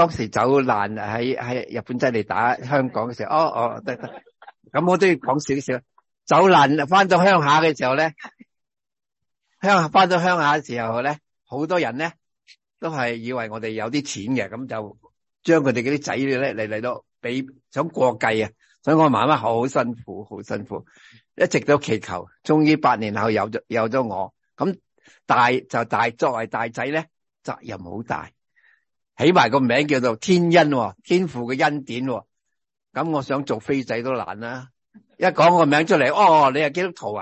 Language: English